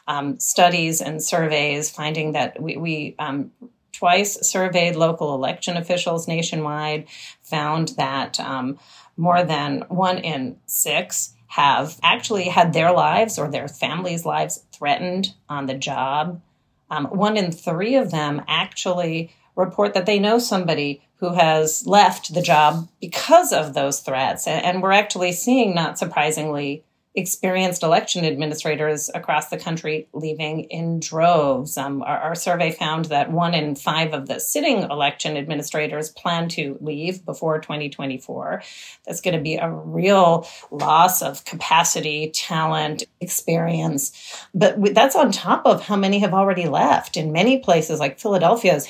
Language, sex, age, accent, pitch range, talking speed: English, female, 40-59, American, 150-180 Hz, 145 wpm